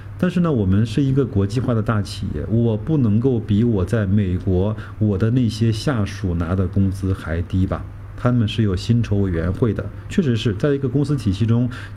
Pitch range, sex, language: 100-120 Hz, male, Chinese